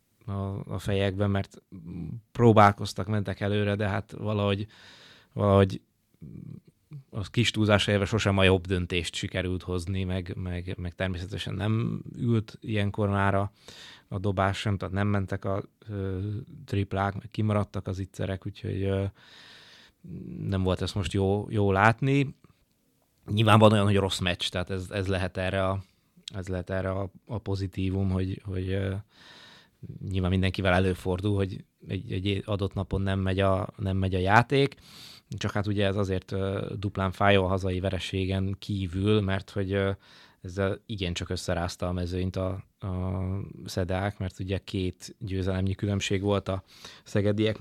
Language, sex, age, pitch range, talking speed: Hungarian, male, 20-39, 95-105 Hz, 140 wpm